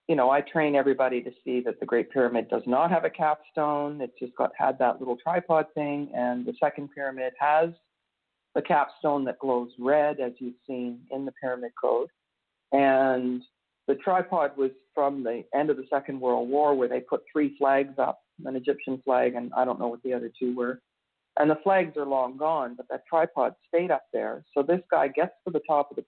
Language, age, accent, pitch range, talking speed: English, 50-69, American, 130-160 Hz, 210 wpm